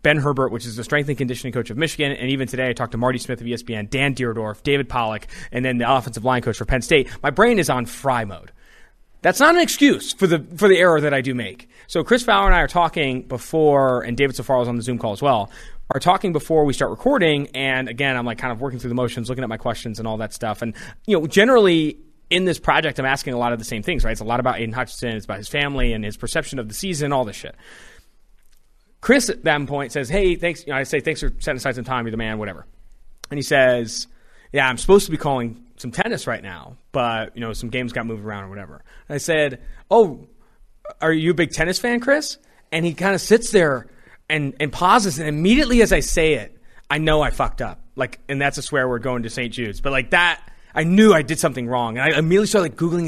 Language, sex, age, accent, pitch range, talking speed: English, male, 30-49, American, 120-160 Hz, 260 wpm